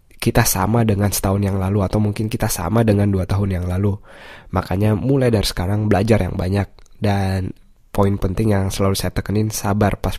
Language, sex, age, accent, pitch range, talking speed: Indonesian, male, 20-39, native, 95-110 Hz, 185 wpm